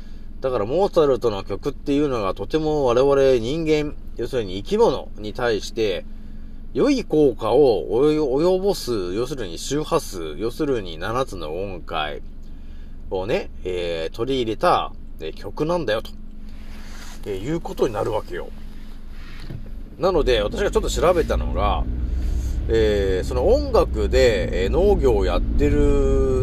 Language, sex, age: Japanese, male, 40-59